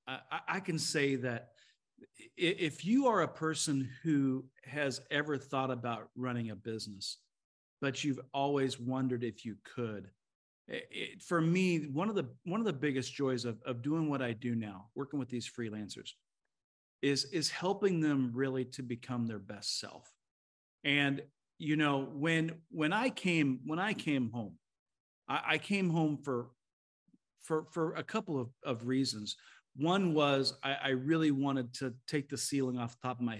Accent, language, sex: American, English, male